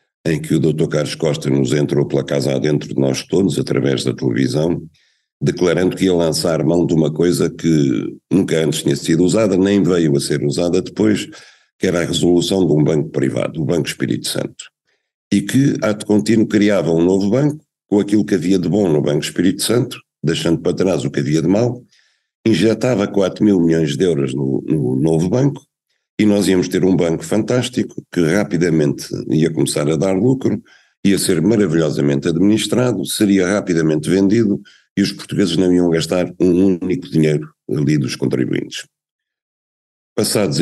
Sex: male